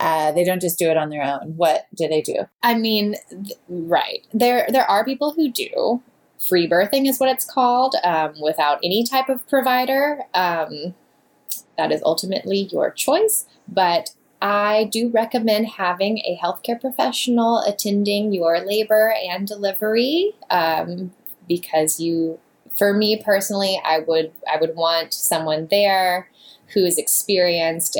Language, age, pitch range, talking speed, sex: English, 10-29, 165-230 Hz, 150 wpm, female